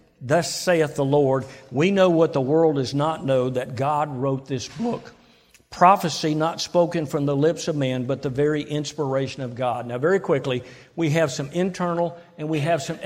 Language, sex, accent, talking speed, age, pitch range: English, male, American, 195 wpm, 50-69, 135-165 Hz